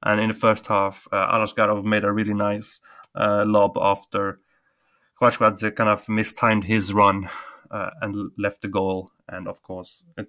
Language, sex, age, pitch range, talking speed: English, male, 20-39, 105-120 Hz, 170 wpm